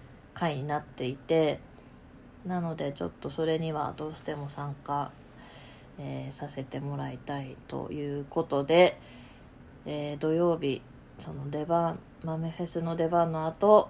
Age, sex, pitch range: 20-39, female, 140-170 Hz